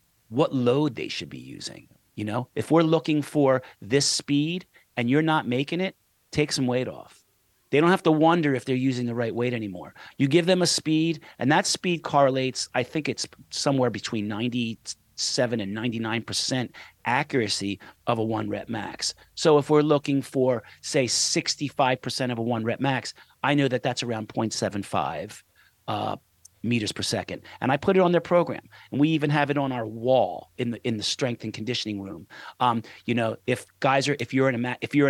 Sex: male